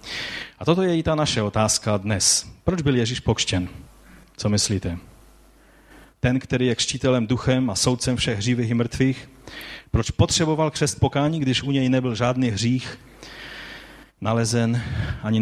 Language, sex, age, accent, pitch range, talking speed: Czech, male, 30-49, native, 110-145 Hz, 145 wpm